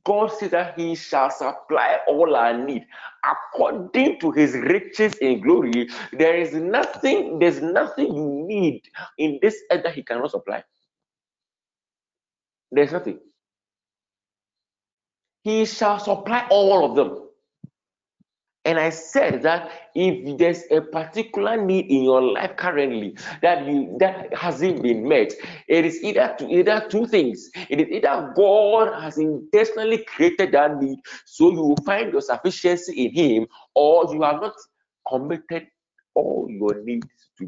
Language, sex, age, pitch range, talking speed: English, male, 50-69, 130-215 Hz, 140 wpm